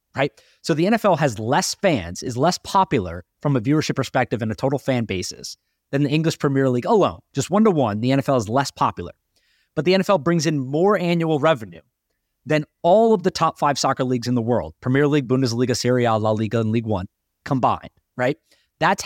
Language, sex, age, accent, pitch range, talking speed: English, male, 30-49, American, 120-170 Hz, 210 wpm